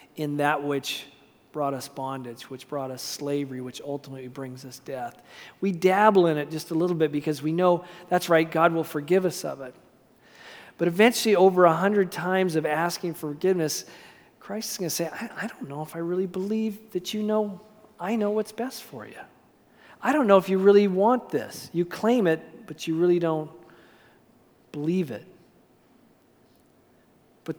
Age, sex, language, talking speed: 40-59, male, English, 180 wpm